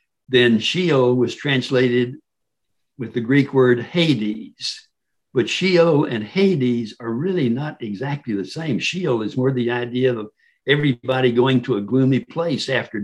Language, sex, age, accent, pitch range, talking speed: English, male, 60-79, American, 115-145 Hz, 145 wpm